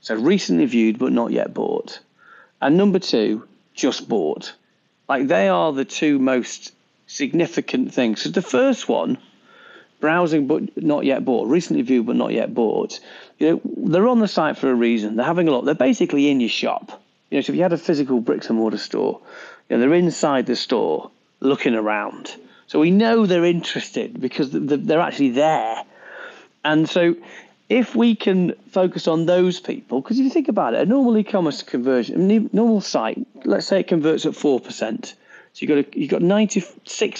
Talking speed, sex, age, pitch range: 190 wpm, male, 40-59, 135-215 Hz